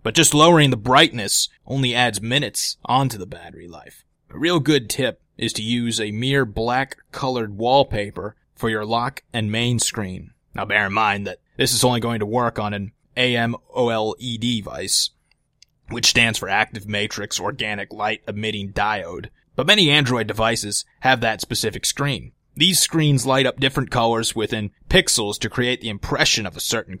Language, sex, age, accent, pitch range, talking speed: English, male, 20-39, American, 110-135 Hz, 170 wpm